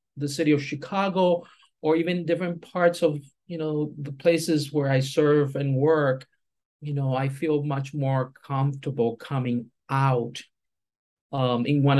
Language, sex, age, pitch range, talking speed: English, male, 50-69, 125-150 Hz, 150 wpm